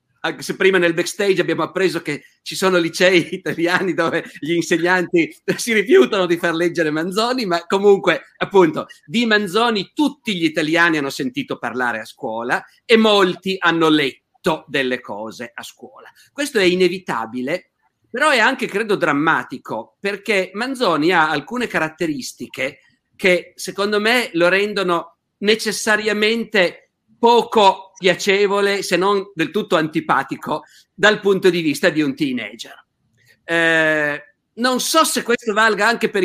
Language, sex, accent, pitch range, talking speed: Italian, male, native, 160-205 Hz, 135 wpm